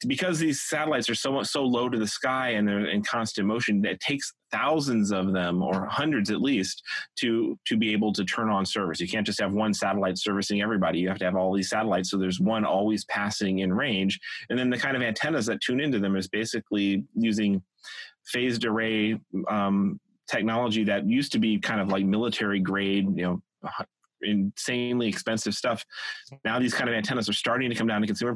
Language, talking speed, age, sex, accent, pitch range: English, 205 wpm, 30-49, male, American, 100-130 Hz